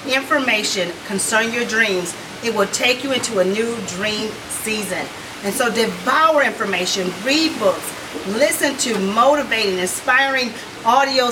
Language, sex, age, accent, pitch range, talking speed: English, female, 40-59, American, 205-260 Hz, 125 wpm